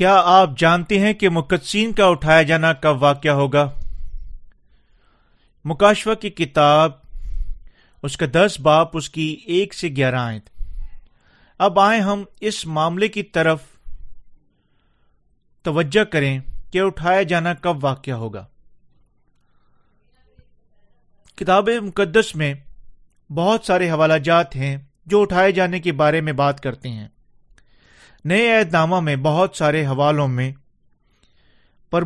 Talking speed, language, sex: 120 wpm, Urdu, male